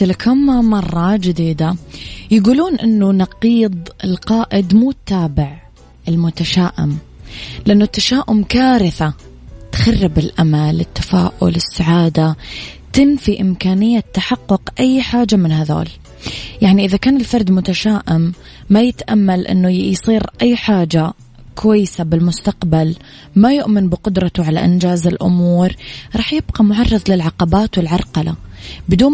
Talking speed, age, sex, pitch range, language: 100 wpm, 20-39, female, 170-215 Hz, Arabic